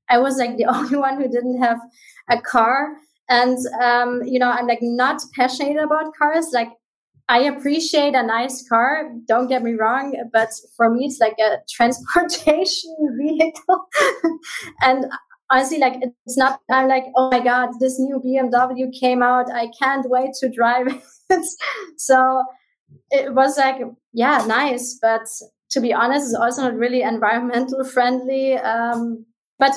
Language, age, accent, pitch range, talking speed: English, 20-39, German, 225-265 Hz, 155 wpm